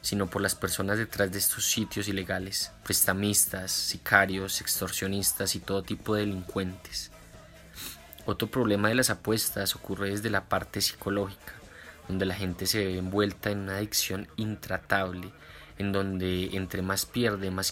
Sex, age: male, 20-39